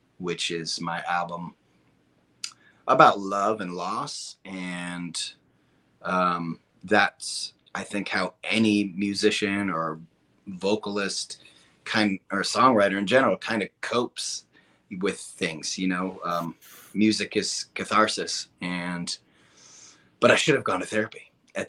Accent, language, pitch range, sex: American, English, 85-100 Hz, male